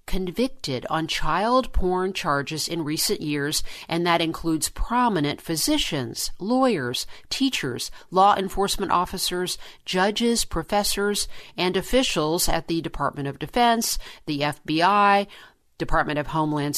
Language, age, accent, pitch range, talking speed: English, 50-69, American, 155-200 Hz, 115 wpm